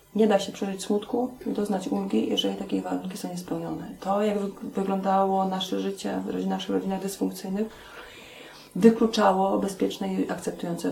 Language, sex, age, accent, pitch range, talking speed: Polish, female, 30-49, native, 175-210 Hz, 135 wpm